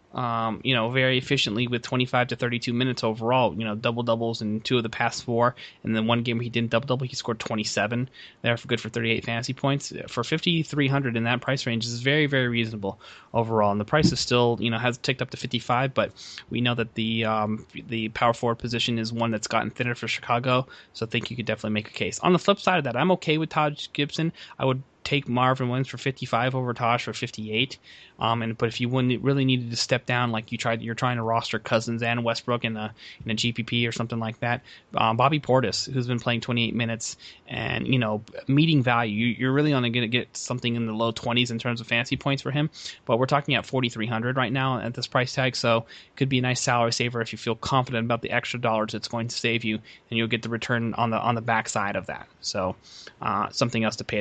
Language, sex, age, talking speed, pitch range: English, male, 20-39, 245 wpm, 115-130 Hz